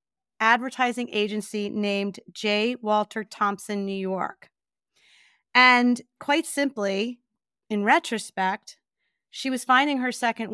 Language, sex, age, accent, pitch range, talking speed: English, female, 30-49, American, 205-265 Hz, 100 wpm